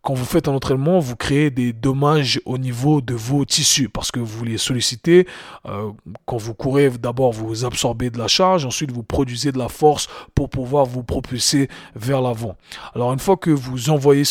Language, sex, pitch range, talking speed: French, male, 125-155 Hz, 195 wpm